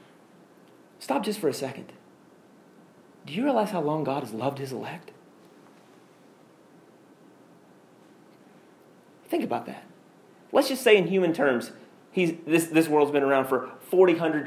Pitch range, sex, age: 125-175 Hz, male, 30-49